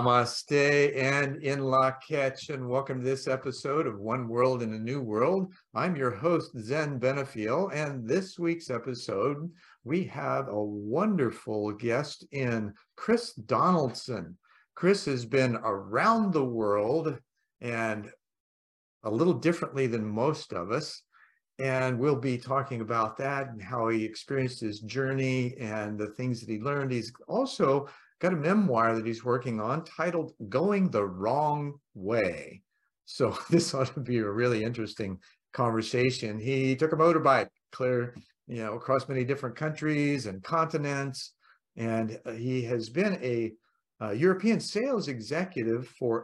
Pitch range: 115-150 Hz